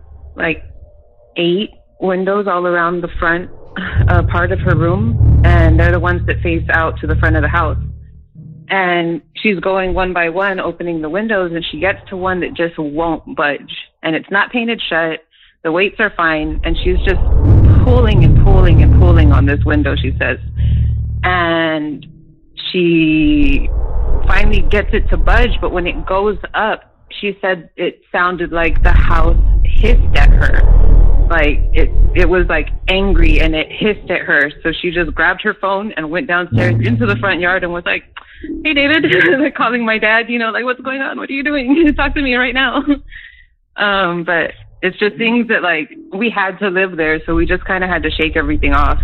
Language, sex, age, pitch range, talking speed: English, female, 30-49, 140-200 Hz, 190 wpm